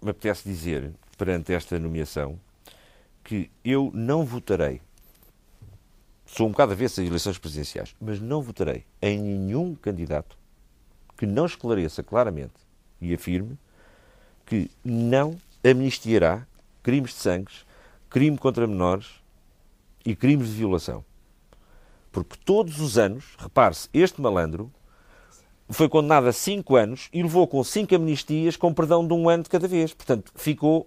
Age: 50-69